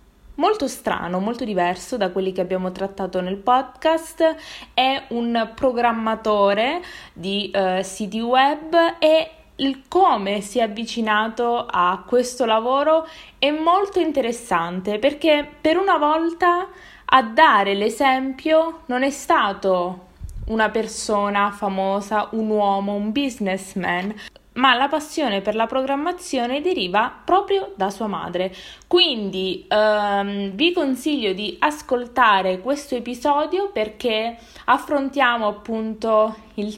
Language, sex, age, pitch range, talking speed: Italian, female, 20-39, 205-280 Hz, 115 wpm